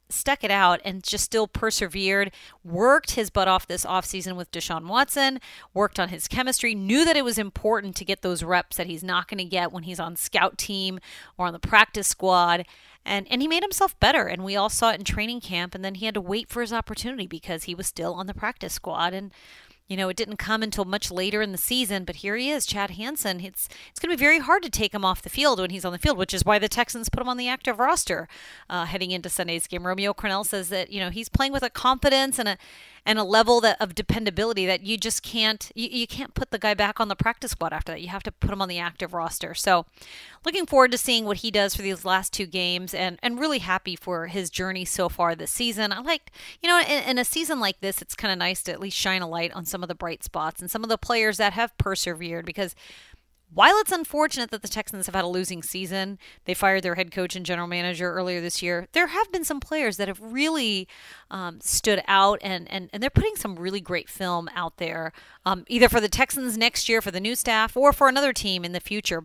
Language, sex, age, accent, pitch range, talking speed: English, female, 30-49, American, 180-235 Hz, 255 wpm